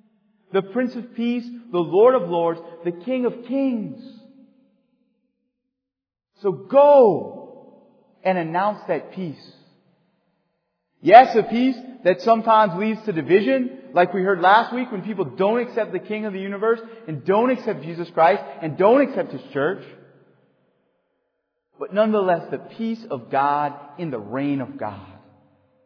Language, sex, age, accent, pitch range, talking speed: English, male, 40-59, American, 160-240 Hz, 140 wpm